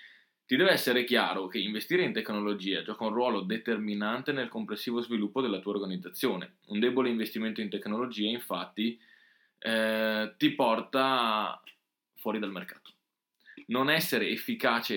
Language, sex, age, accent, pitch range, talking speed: Italian, male, 20-39, native, 105-130 Hz, 130 wpm